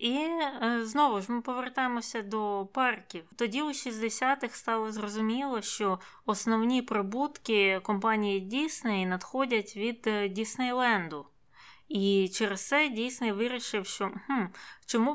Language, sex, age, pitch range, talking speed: Ukrainian, female, 20-39, 200-250 Hz, 110 wpm